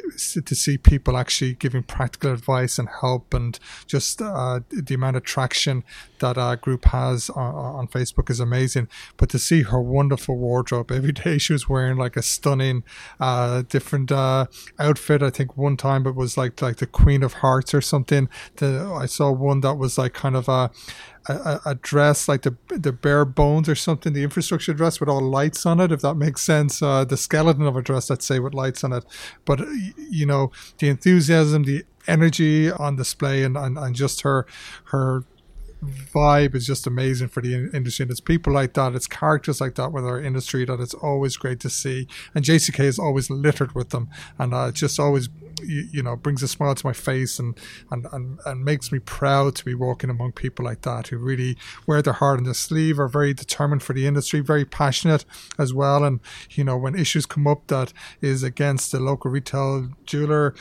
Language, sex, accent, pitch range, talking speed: English, male, Irish, 130-145 Hz, 205 wpm